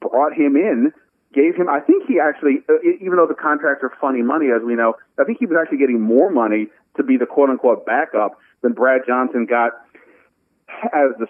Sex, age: male, 40-59